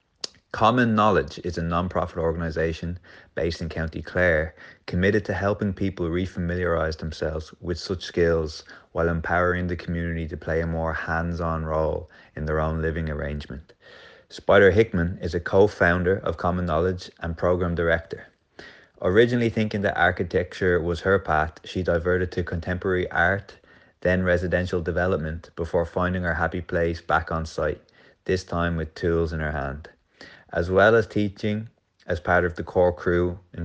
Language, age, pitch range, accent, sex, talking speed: English, 20-39, 85-95 Hz, Irish, male, 155 wpm